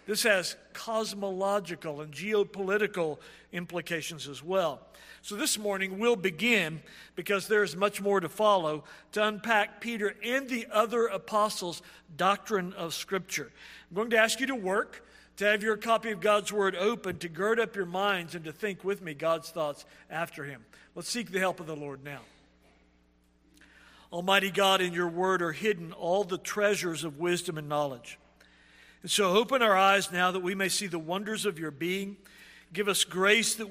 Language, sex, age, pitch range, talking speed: English, male, 50-69, 165-210 Hz, 180 wpm